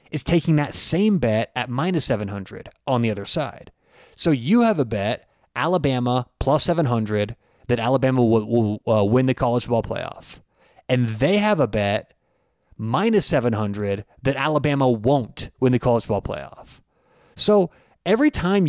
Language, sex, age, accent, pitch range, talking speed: English, male, 30-49, American, 125-175 Hz, 155 wpm